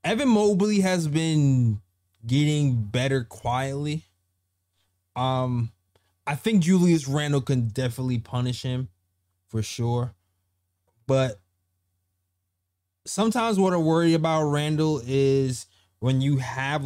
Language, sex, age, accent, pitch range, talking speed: English, male, 20-39, American, 95-140 Hz, 105 wpm